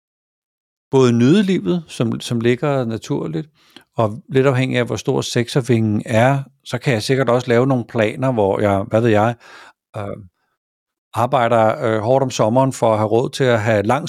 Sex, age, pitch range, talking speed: male, 50-69, 110-135 Hz, 175 wpm